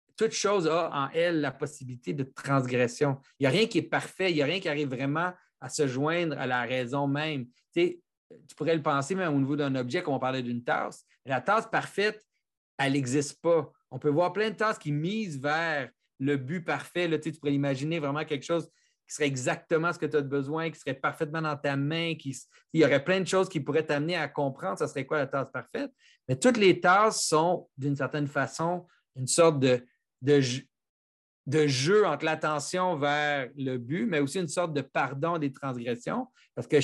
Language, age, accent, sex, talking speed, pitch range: French, 30-49, Canadian, male, 210 wpm, 135-170 Hz